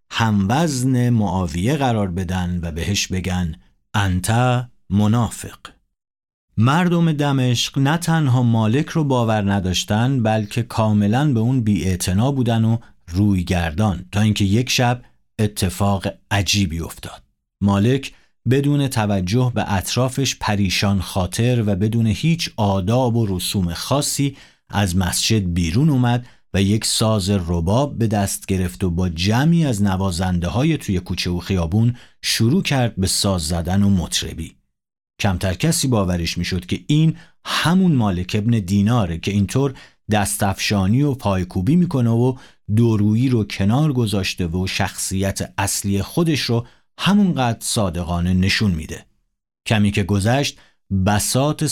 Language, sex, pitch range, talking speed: Persian, male, 95-125 Hz, 125 wpm